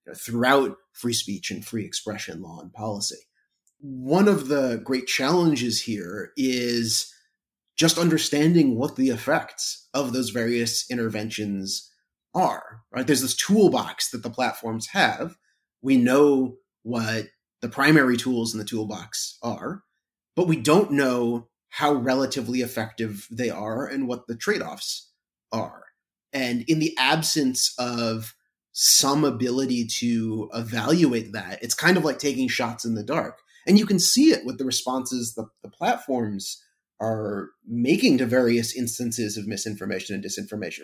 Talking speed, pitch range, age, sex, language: 145 wpm, 115-140 Hz, 30-49, male, English